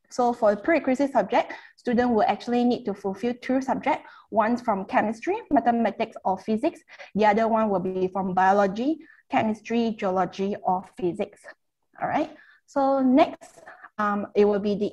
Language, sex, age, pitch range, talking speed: English, female, 20-39, 200-240 Hz, 155 wpm